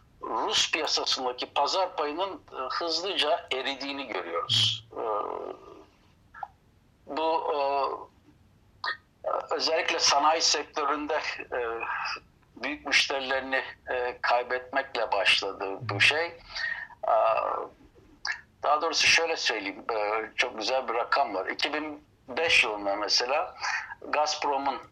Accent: native